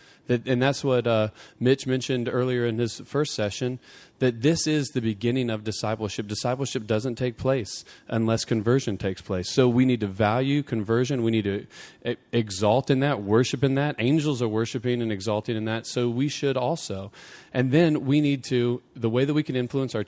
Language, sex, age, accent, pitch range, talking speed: English, male, 40-59, American, 110-135 Hz, 190 wpm